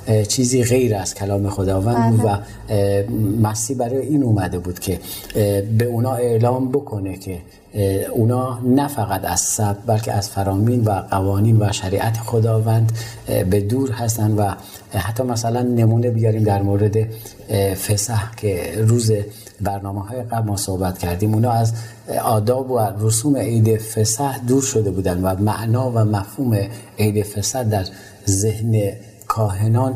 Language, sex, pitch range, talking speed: Persian, male, 100-115 Hz, 135 wpm